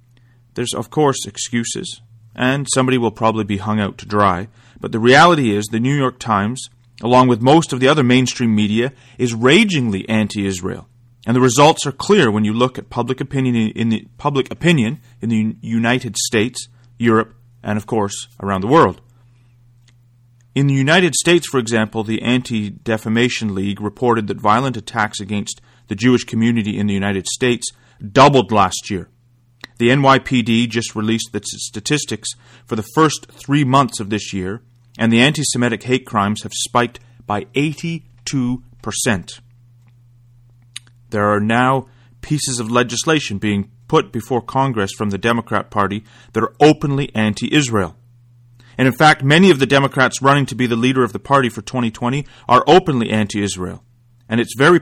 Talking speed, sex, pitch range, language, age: 160 wpm, male, 110-130 Hz, English, 30-49